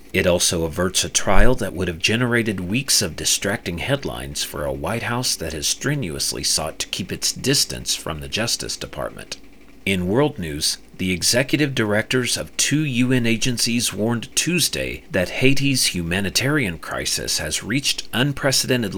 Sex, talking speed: male, 150 wpm